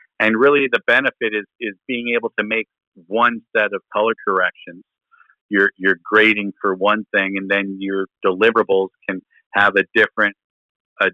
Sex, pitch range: male, 95-105 Hz